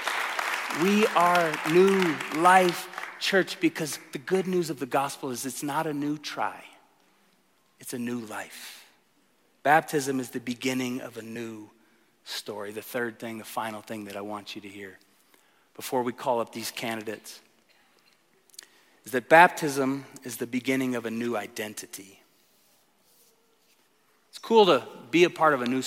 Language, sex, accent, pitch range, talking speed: English, male, American, 130-170 Hz, 155 wpm